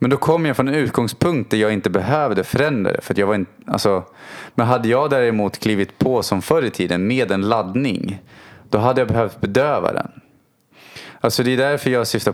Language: Swedish